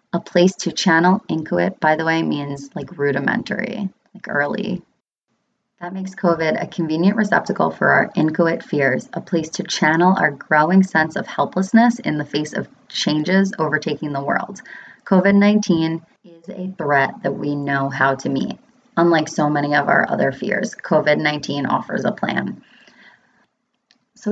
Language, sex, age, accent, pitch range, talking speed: English, female, 30-49, American, 155-205 Hz, 155 wpm